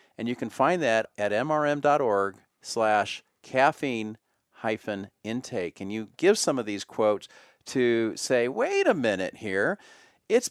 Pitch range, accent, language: 115-165 Hz, American, English